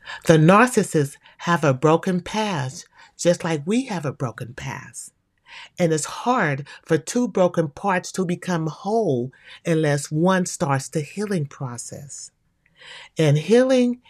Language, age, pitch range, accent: English, 40-59, 140-190 Hz, American